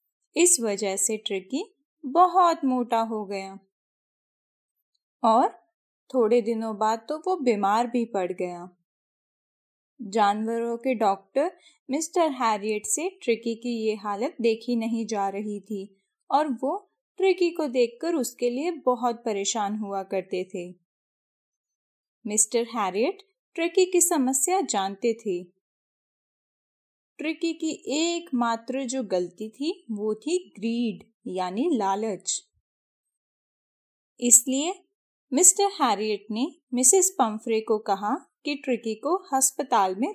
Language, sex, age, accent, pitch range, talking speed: Hindi, female, 10-29, native, 210-300 Hz, 110 wpm